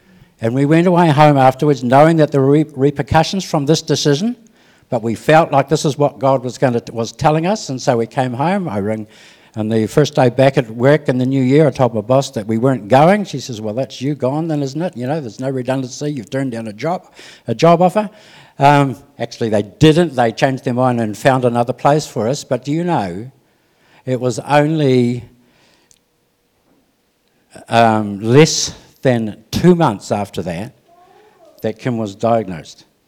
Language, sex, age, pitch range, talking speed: English, male, 60-79, 115-150 Hz, 195 wpm